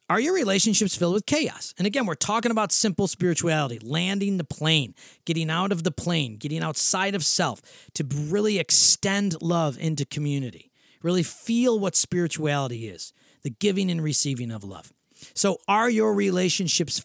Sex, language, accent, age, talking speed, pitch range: male, English, American, 40-59, 160 wpm, 140-195 Hz